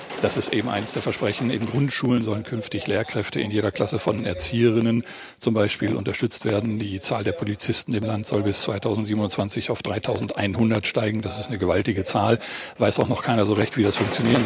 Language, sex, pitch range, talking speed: German, male, 105-115 Hz, 185 wpm